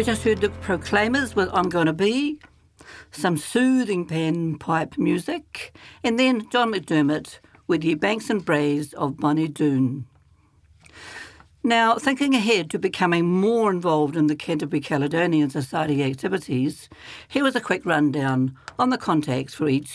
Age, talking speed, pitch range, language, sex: 60-79, 145 wpm, 145-200 Hz, English, female